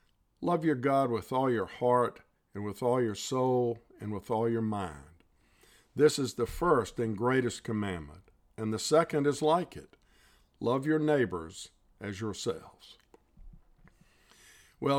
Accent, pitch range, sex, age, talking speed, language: American, 105-130 Hz, male, 50-69, 145 wpm, English